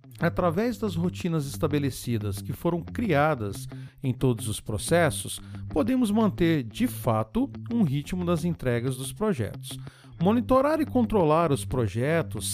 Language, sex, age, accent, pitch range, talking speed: Portuguese, male, 50-69, Brazilian, 120-185 Hz, 125 wpm